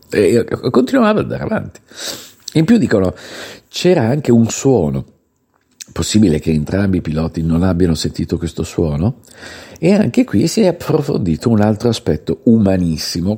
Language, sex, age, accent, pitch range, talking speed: Italian, male, 50-69, native, 90-130 Hz, 145 wpm